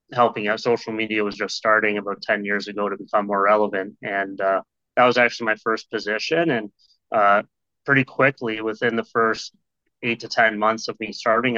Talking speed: 190 wpm